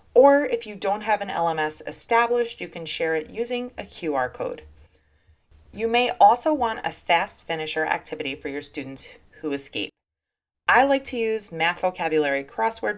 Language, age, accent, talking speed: English, 30-49, American, 165 wpm